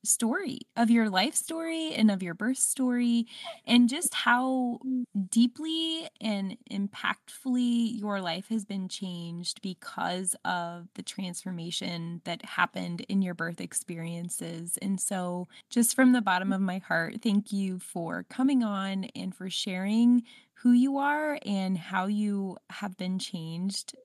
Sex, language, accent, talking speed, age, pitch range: female, English, American, 140 wpm, 20-39, 190-245 Hz